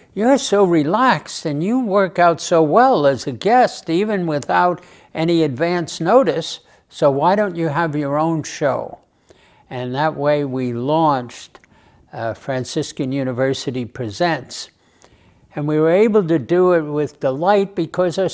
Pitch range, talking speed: 145-180 Hz, 145 wpm